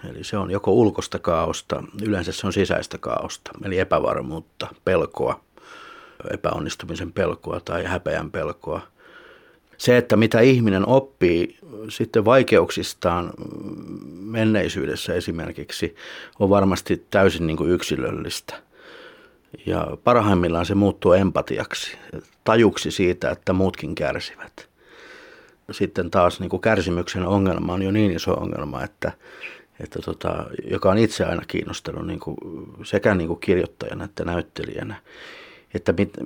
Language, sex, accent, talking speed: Finnish, male, native, 105 wpm